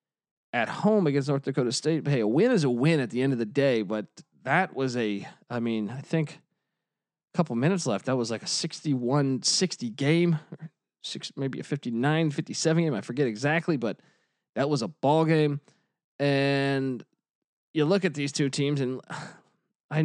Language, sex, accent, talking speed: English, male, American, 185 wpm